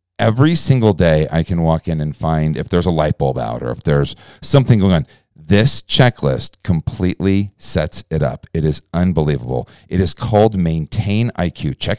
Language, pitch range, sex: English, 80-110 Hz, male